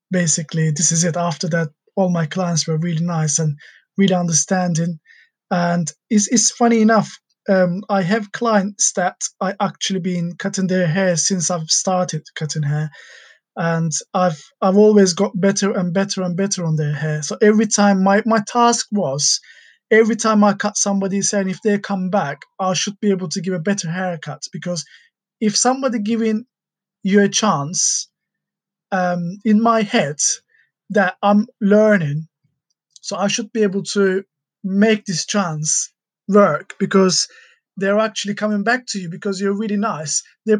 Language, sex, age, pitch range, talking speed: English, male, 20-39, 170-210 Hz, 165 wpm